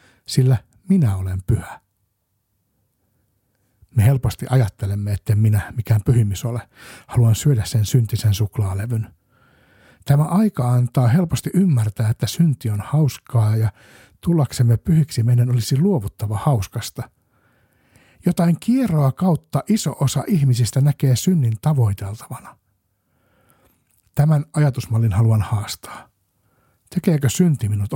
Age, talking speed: 60-79, 105 wpm